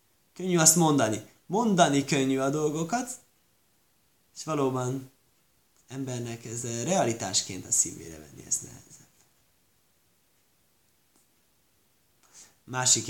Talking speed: 80 wpm